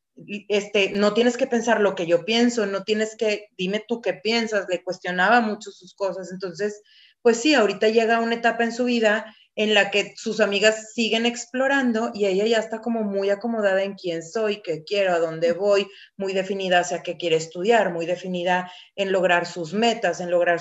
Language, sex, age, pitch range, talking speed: Spanish, female, 30-49, 190-225 Hz, 195 wpm